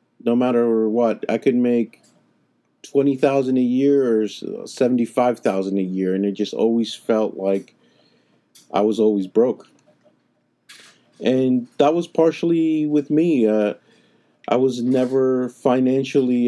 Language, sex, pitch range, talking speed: English, male, 105-130 Hz, 125 wpm